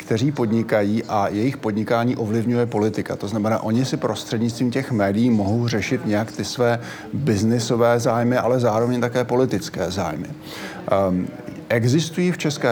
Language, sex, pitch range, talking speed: Slovak, male, 105-130 Hz, 140 wpm